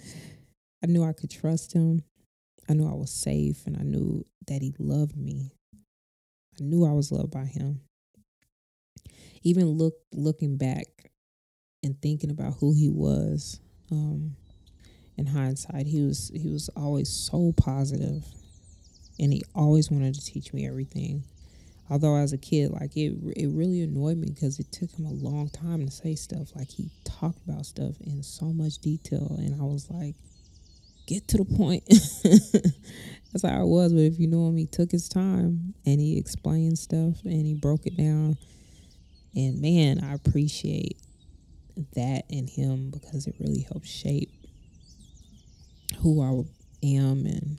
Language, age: English, 20-39